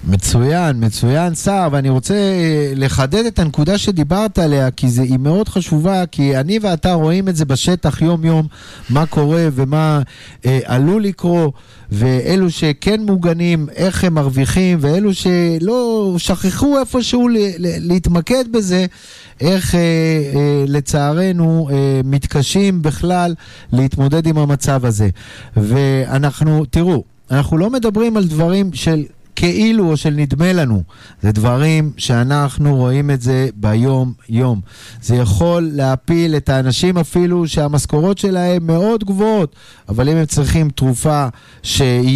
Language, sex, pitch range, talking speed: Hebrew, male, 130-175 Hz, 130 wpm